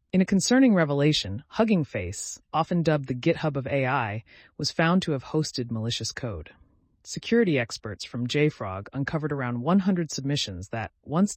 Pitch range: 115-160 Hz